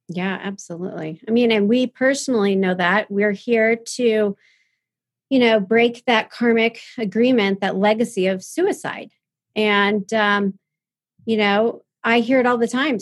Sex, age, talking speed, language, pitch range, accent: female, 40-59, 145 wpm, English, 200-240 Hz, American